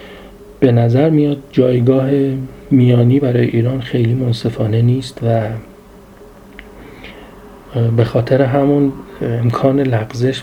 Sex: male